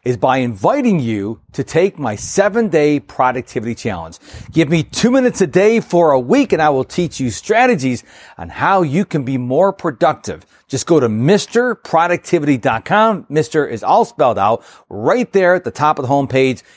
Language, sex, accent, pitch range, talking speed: English, male, American, 120-175 Hz, 175 wpm